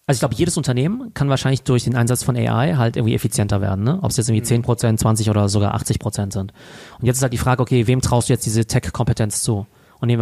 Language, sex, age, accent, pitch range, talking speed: German, male, 30-49, German, 105-125 Hz, 265 wpm